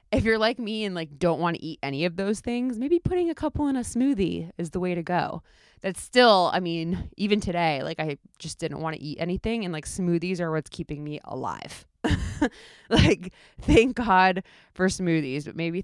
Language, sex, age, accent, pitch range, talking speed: English, female, 20-39, American, 160-210 Hz, 210 wpm